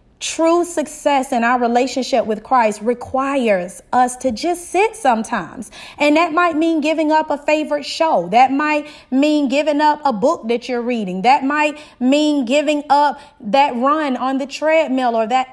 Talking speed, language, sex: 170 wpm, English, female